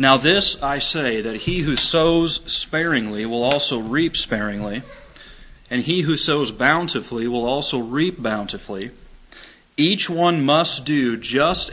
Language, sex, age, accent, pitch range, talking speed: English, male, 30-49, American, 120-150 Hz, 140 wpm